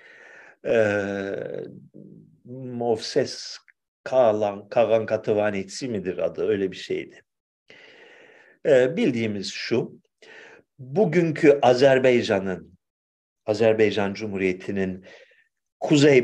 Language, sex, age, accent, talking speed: Turkish, male, 50-69, native, 65 wpm